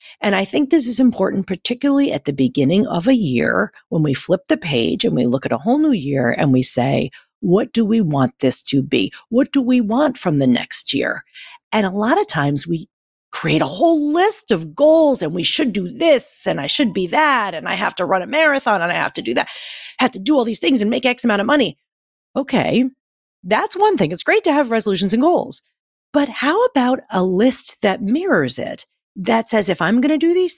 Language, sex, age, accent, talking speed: English, female, 40-59, American, 230 wpm